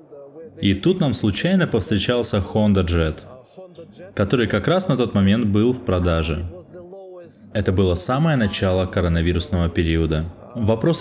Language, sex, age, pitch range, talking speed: Russian, male, 20-39, 95-125 Hz, 125 wpm